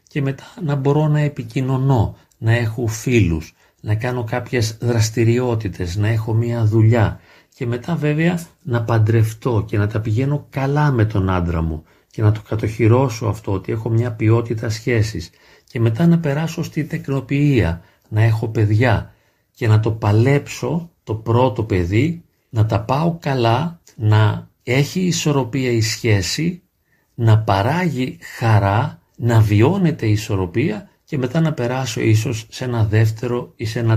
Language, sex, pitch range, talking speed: Greek, male, 110-130 Hz, 150 wpm